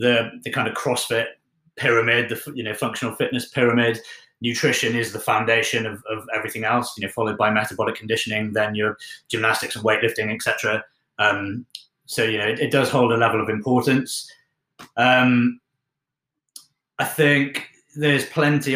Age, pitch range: 30-49, 115-135 Hz